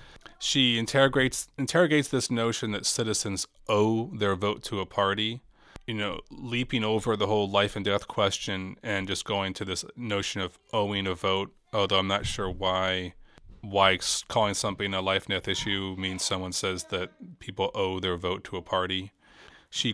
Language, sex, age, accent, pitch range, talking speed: English, male, 30-49, American, 95-110 Hz, 175 wpm